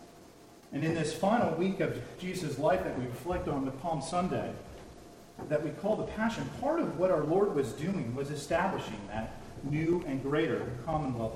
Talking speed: 180 wpm